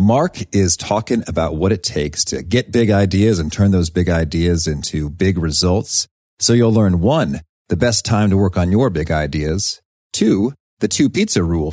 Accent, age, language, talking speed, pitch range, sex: American, 40-59, English, 190 wpm, 80-105 Hz, male